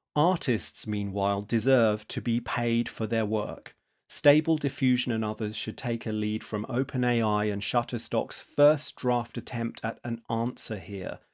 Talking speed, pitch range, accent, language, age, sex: 150 wpm, 110-135 Hz, British, English, 40-59, male